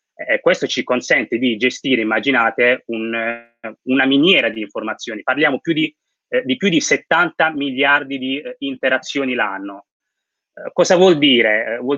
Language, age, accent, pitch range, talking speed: Italian, 30-49, native, 120-160 Hz, 160 wpm